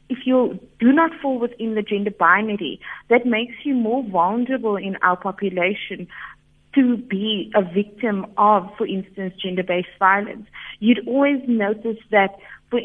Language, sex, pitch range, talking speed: English, female, 195-235 Hz, 145 wpm